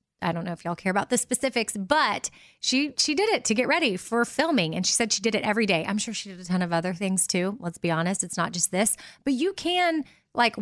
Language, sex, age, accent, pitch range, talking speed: English, female, 20-39, American, 180-230 Hz, 270 wpm